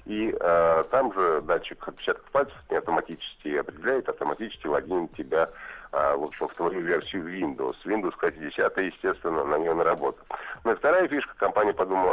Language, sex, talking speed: Russian, male, 160 wpm